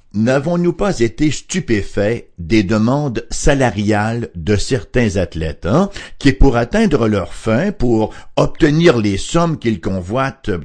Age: 60-79